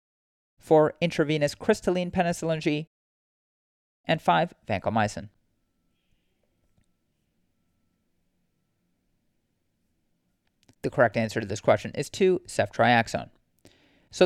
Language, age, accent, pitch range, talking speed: English, 30-49, American, 125-185 Hz, 75 wpm